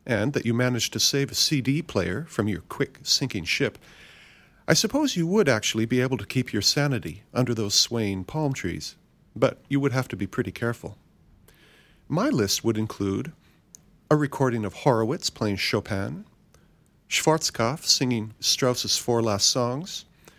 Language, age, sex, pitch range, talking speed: English, 40-59, male, 105-150 Hz, 155 wpm